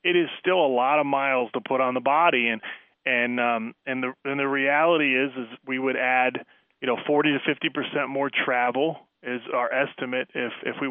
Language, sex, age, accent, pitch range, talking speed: English, male, 30-49, American, 130-160 Hz, 205 wpm